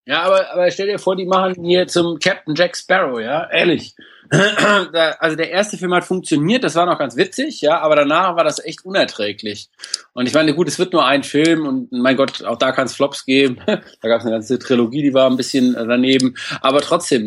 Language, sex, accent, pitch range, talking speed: German, male, German, 130-160 Hz, 220 wpm